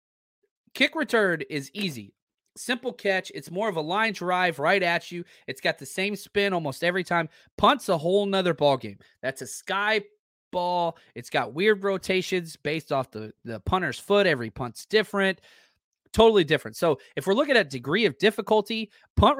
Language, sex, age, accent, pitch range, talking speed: English, male, 30-49, American, 120-200 Hz, 175 wpm